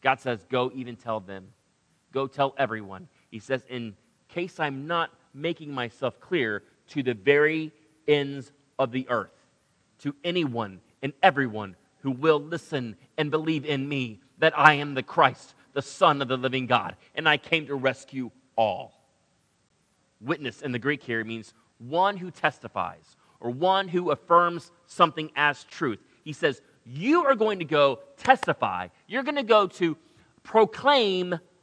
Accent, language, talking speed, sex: American, English, 155 wpm, male